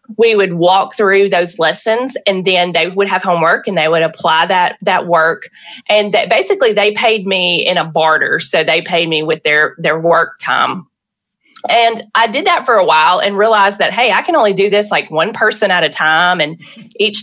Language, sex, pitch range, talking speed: English, female, 170-210 Hz, 210 wpm